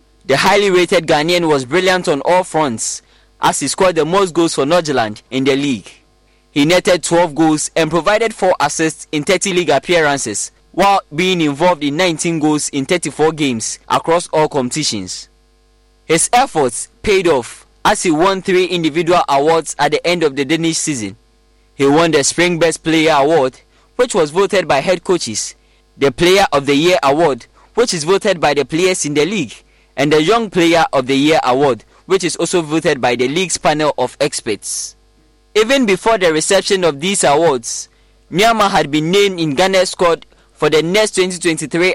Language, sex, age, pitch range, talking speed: English, male, 20-39, 145-185 Hz, 175 wpm